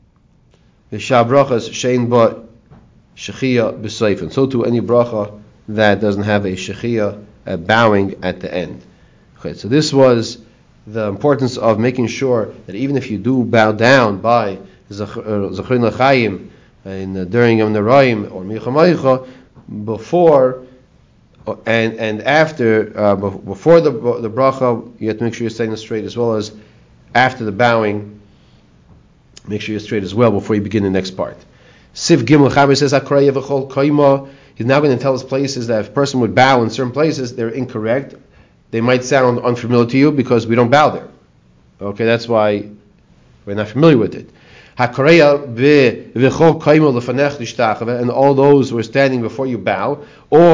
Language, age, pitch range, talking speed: English, 40-59, 110-135 Hz, 145 wpm